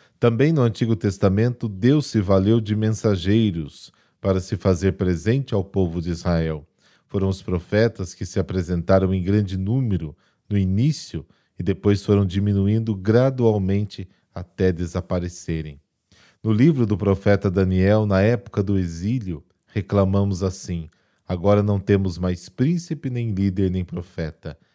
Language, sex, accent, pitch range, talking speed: Portuguese, male, Brazilian, 95-115 Hz, 135 wpm